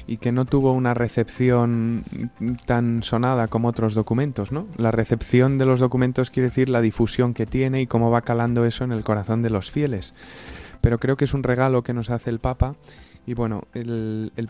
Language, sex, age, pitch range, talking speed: Spanish, male, 20-39, 115-135 Hz, 205 wpm